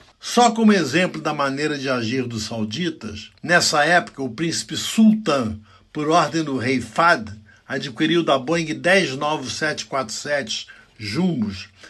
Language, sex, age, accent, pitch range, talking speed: Portuguese, male, 60-79, Brazilian, 115-160 Hz, 120 wpm